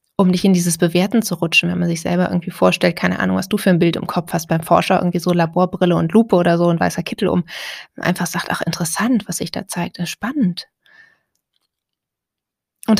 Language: German